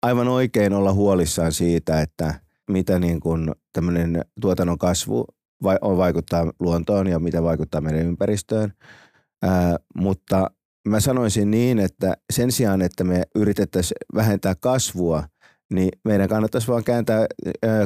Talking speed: 125 wpm